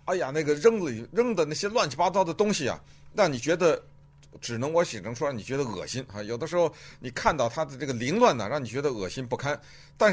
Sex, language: male, Chinese